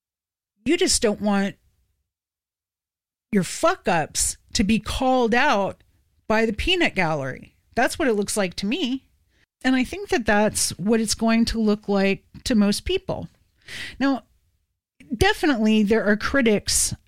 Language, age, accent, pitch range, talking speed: English, 40-59, American, 170-215 Hz, 140 wpm